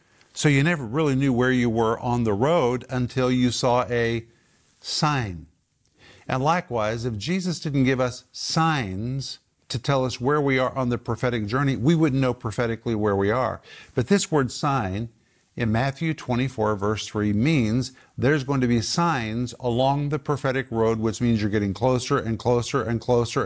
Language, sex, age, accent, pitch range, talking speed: English, male, 50-69, American, 115-135 Hz, 175 wpm